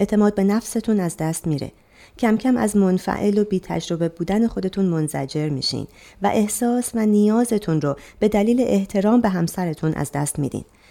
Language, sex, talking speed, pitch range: Persian, female, 165 wpm, 155-210 Hz